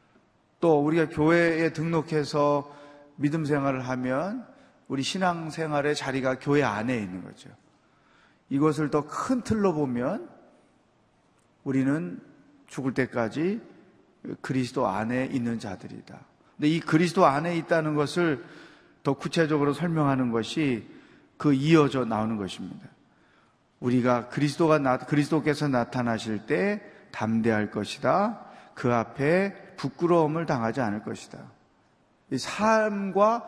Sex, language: male, Korean